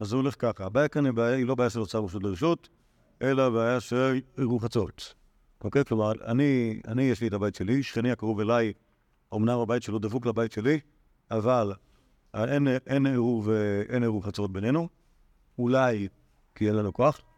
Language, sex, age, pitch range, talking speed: Hebrew, male, 50-69, 110-140 Hz, 155 wpm